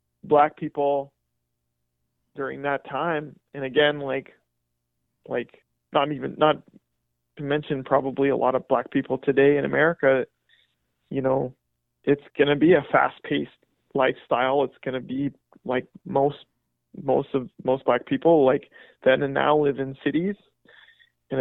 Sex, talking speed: male, 145 wpm